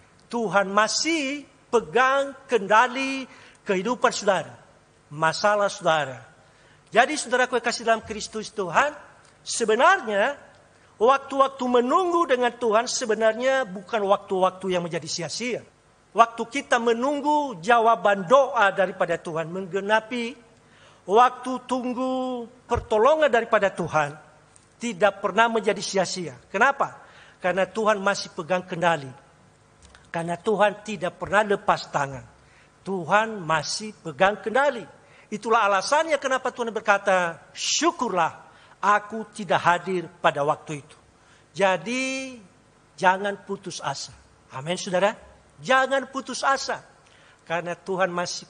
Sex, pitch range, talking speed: male, 175-240 Hz, 100 wpm